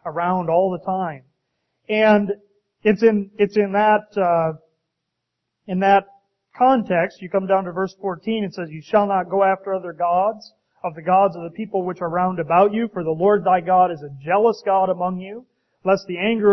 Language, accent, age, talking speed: English, American, 40-59, 195 wpm